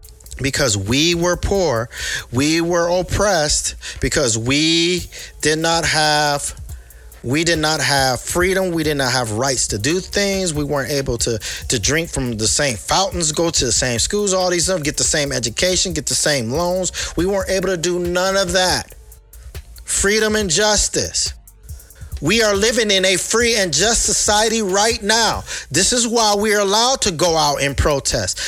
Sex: male